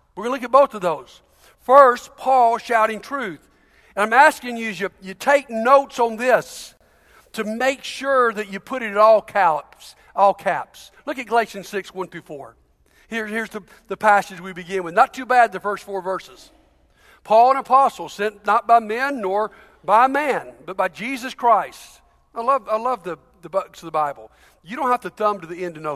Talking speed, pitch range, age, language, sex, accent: 210 wpm, 185-245 Hz, 60-79, English, male, American